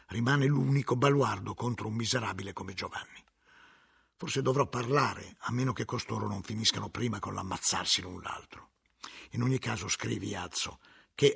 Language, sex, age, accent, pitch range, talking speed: Italian, male, 50-69, native, 105-135 Hz, 150 wpm